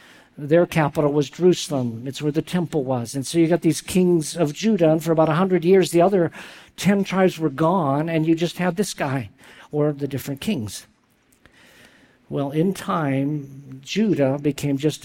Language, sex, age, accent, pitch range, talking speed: English, male, 50-69, American, 140-175 Hz, 175 wpm